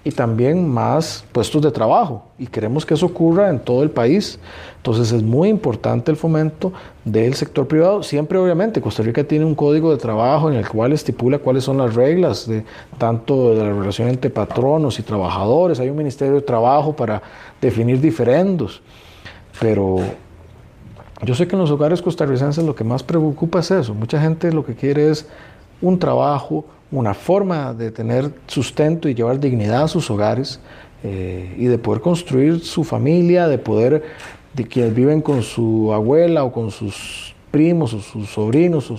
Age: 40-59